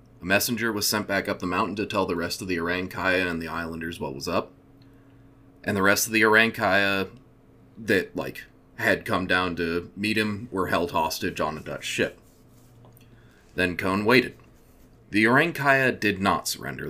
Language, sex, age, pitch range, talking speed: English, male, 30-49, 95-125 Hz, 180 wpm